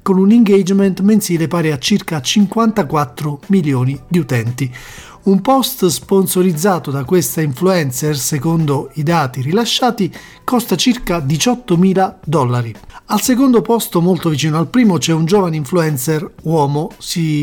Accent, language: native, Italian